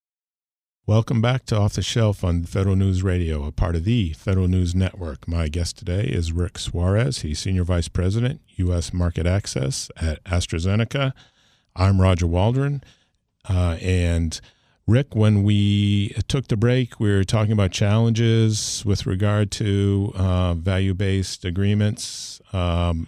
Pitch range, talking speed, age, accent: 90-105 Hz, 145 wpm, 50-69, American